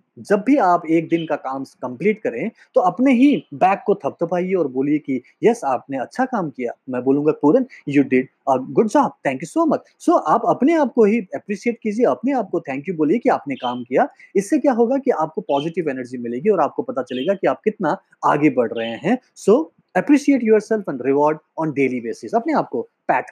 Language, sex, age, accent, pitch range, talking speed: Hindi, male, 30-49, native, 140-215 Hz, 175 wpm